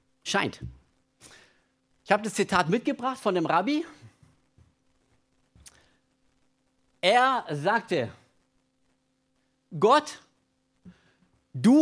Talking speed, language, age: 65 wpm, German, 50-69